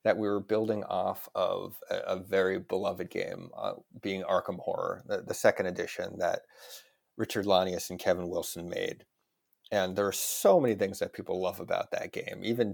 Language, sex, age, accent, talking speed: English, male, 30-49, American, 185 wpm